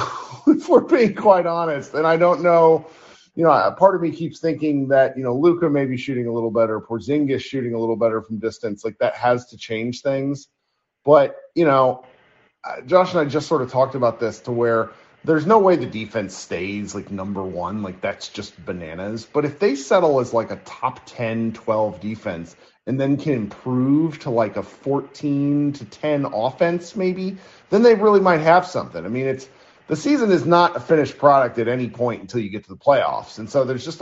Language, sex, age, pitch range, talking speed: English, male, 40-59, 110-155 Hz, 210 wpm